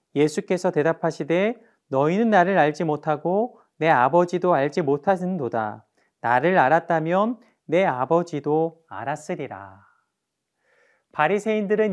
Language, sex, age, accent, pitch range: Korean, male, 30-49, native, 150-200 Hz